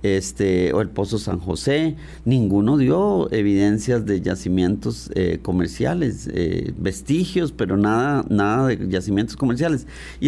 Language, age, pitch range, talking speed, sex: Spanish, 40-59, 100-140 Hz, 125 wpm, male